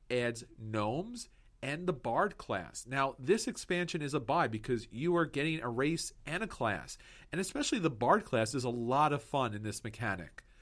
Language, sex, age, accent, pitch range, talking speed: English, male, 40-59, American, 115-150 Hz, 190 wpm